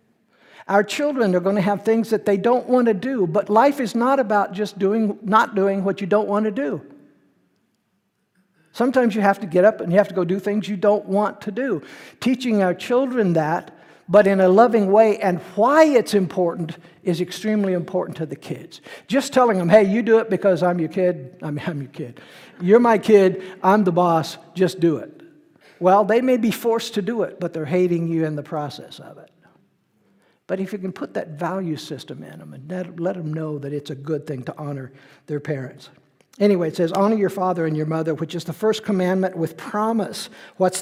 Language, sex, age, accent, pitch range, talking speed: English, male, 60-79, American, 160-215 Hz, 215 wpm